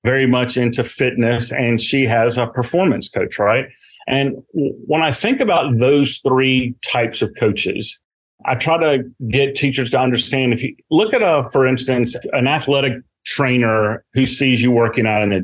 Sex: male